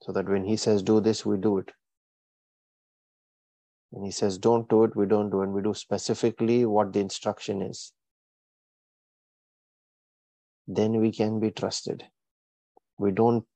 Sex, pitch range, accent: male, 100-110 Hz, Indian